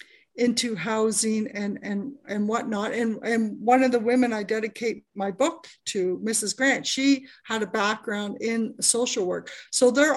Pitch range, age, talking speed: 220-280 Hz, 50-69, 165 wpm